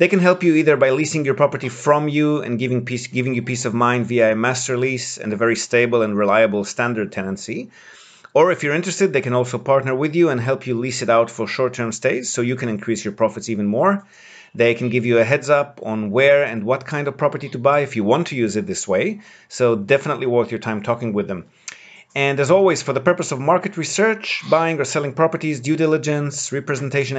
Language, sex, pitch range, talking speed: English, male, 115-150 Hz, 230 wpm